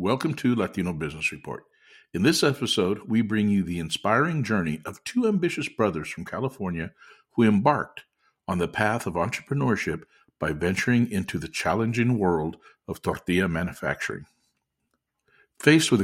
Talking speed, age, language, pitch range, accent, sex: 140 wpm, 50-69, English, 90-125 Hz, American, male